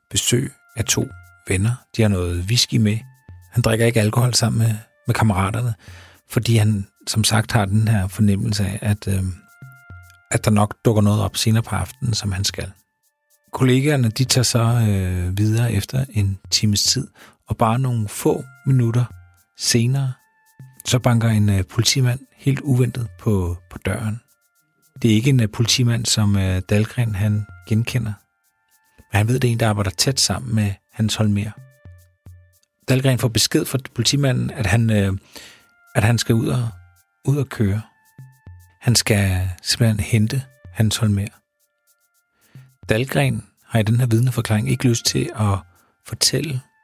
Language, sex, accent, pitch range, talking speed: Danish, male, native, 100-125 Hz, 150 wpm